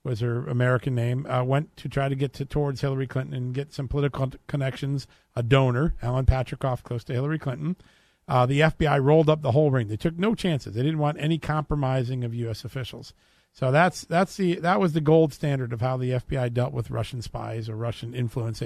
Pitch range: 125-155 Hz